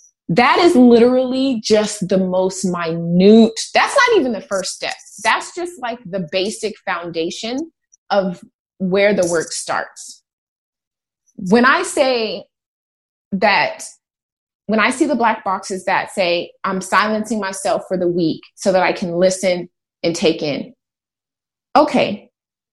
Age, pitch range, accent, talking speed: 30-49, 190-245 Hz, American, 135 wpm